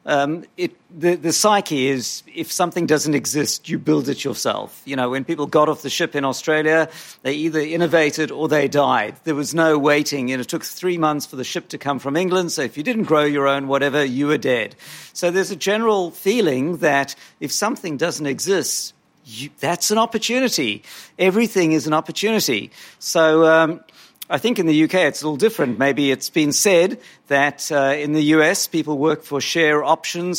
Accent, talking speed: British, 195 wpm